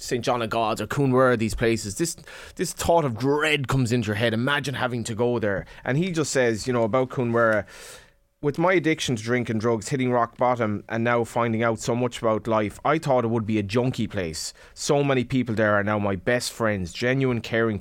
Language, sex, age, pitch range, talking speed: English, male, 20-39, 105-125 Hz, 225 wpm